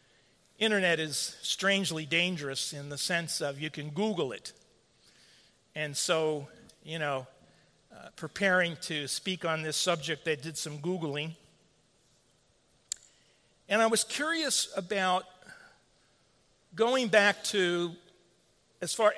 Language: English